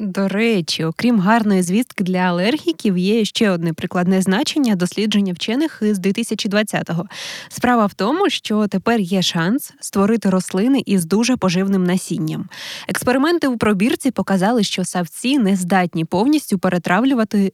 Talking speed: 135 wpm